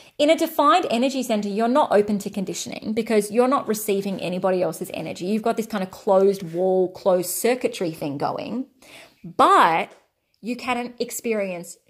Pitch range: 190-250 Hz